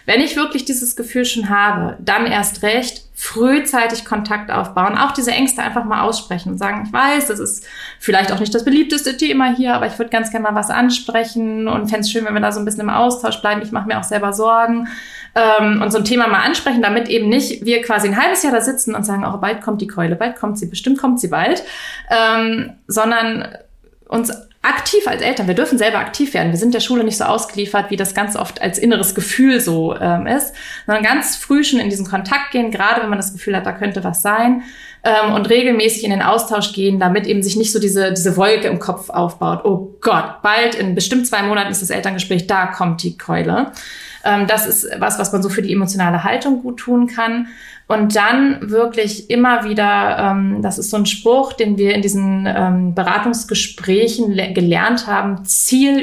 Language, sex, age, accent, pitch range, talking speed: German, female, 20-39, German, 200-245 Hz, 210 wpm